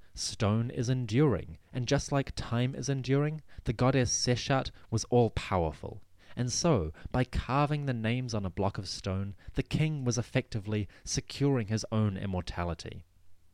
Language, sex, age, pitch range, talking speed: English, male, 30-49, 90-130 Hz, 145 wpm